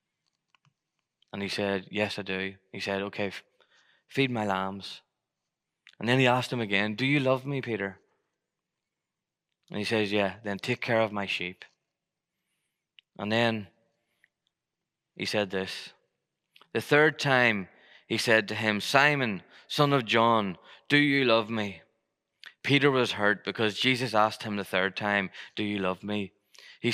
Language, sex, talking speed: English, male, 150 wpm